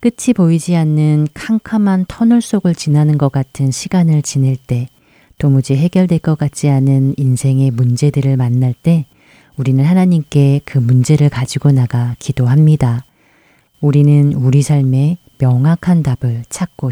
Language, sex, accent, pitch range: Korean, female, native, 130-160 Hz